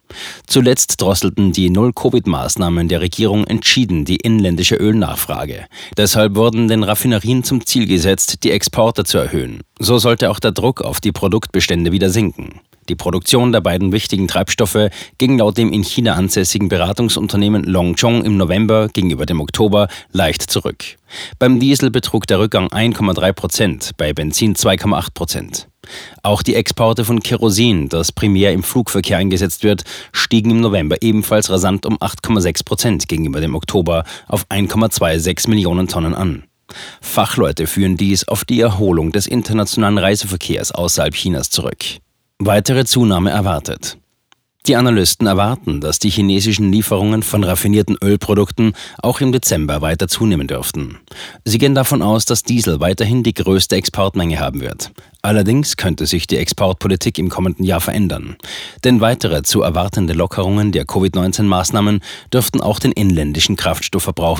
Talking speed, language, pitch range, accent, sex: 145 wpm, German, 90-110 Hz, German, male